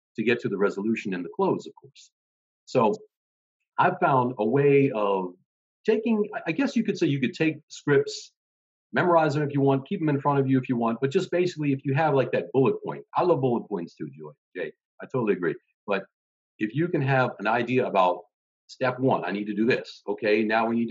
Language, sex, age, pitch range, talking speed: English, male, 50-69, 115-160 Hz, 225 wpm